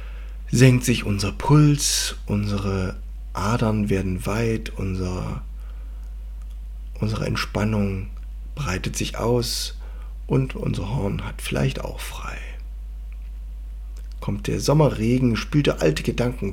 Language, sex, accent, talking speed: German, male, German, 100 wpm